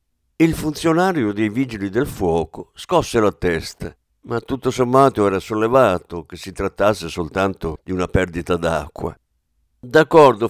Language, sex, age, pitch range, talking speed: Italian, male, 60-79, 90-130 Hz, 130 wpm